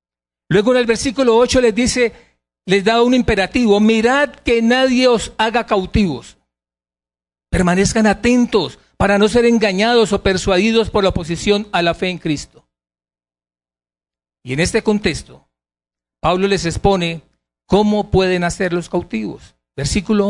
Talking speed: 135 wpm